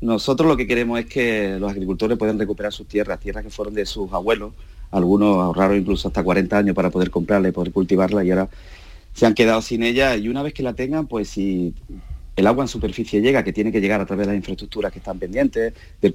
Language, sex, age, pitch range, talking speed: Spanish, male, 30-49, 95-115 Hz, 235 wpm